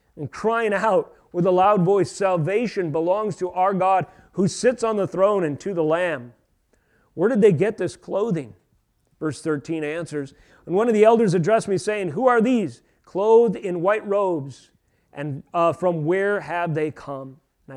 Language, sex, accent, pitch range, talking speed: English, male, American, 150-195 Hz, 180 wpm